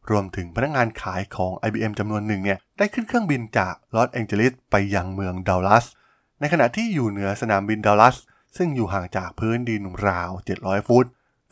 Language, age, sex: Thai, 20-39, male